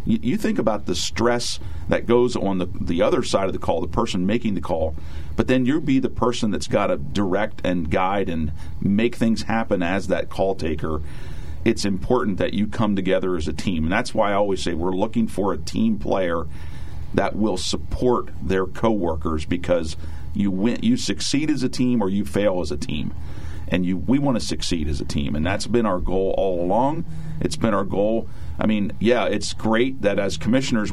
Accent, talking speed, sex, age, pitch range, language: American, 210 wpm, male, 50-69, 80-105 Hz, English